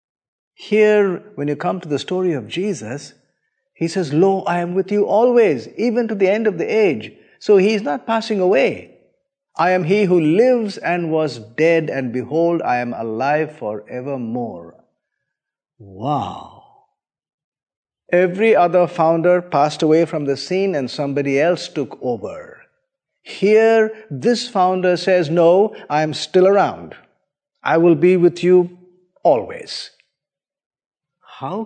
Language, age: Filipino, 50-69